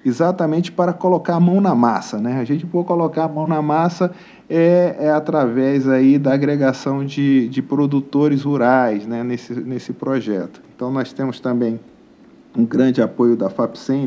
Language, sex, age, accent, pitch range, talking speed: Portuguese, male, 50-69, Brazilian, 130-155 Hz, 165 wpm